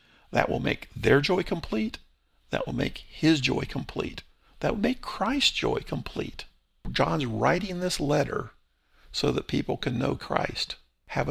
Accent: American